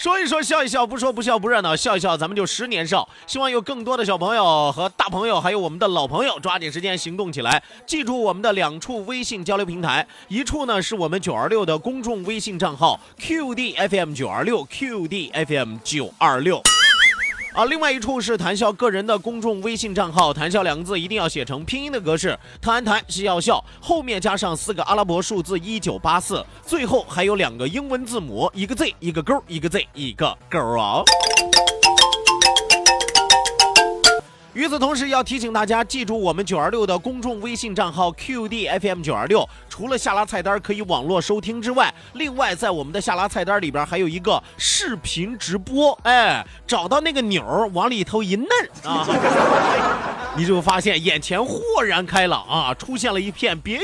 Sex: male